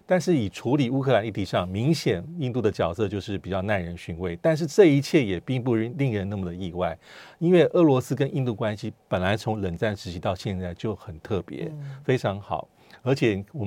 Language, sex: Chinese, male